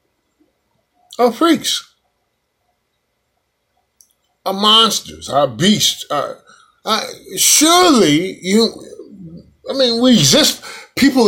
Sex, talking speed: male, 80 wpm